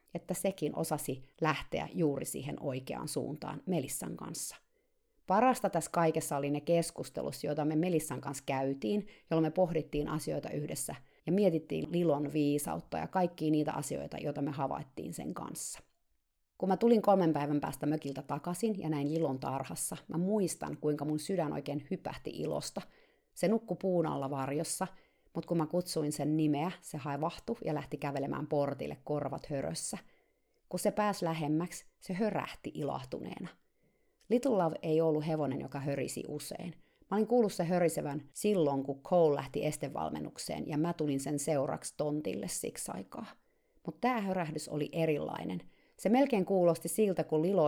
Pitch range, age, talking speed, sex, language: 145-185 Hz, 30-49, 155 wpm, female, Finnish